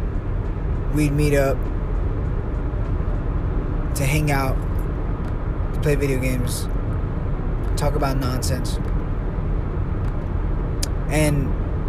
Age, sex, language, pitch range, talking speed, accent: 20-39, male, English, 90-140 Hz, 70 wpm, American